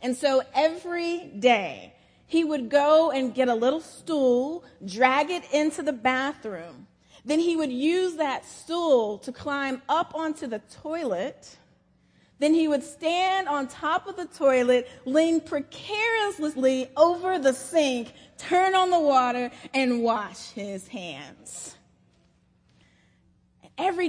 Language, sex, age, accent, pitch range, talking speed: English, female, 30-49, American, 235-310 Hz, 130 wpm